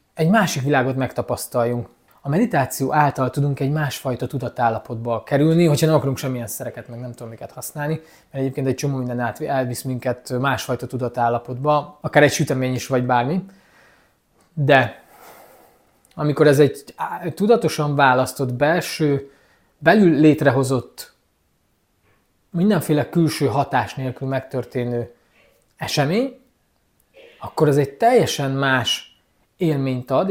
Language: Hungarian